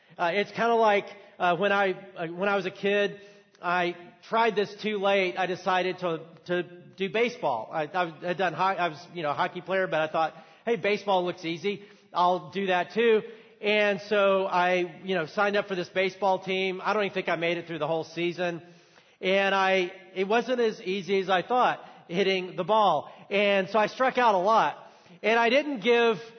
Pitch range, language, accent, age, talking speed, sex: 180-215 Hz, English, American, 40-59, 210 wpm, male